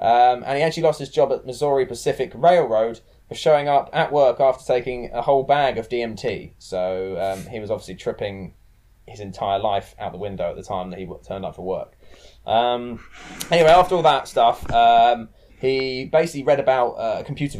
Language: English